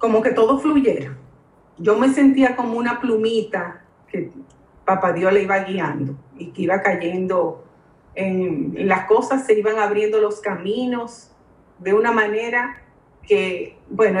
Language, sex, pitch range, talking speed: Spanish, female, 160-210 Hz, 145 wpm